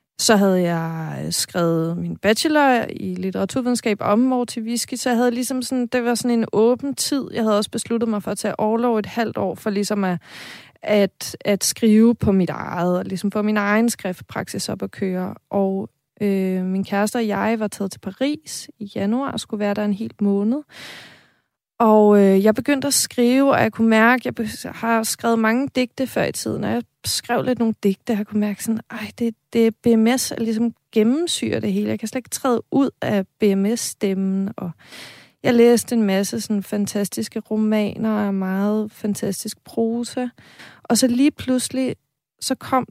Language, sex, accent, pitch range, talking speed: Danish, female, native, 200-235 Hz, 185 wpm